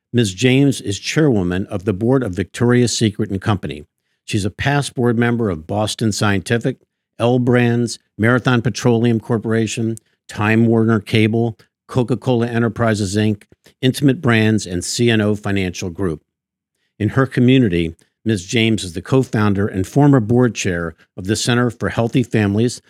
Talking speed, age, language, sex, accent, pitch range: 145 wpm, 50-69, English, male, American, 100-120 Hz